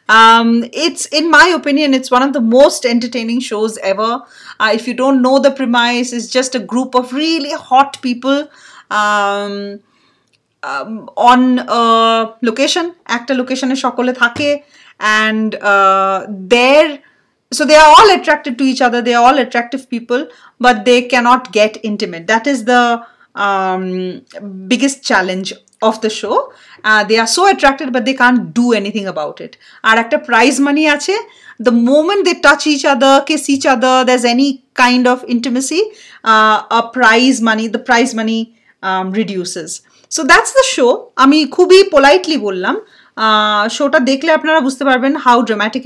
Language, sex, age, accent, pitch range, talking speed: Bengali, female, 30-49, native, 225-280 Hz, 155 wpm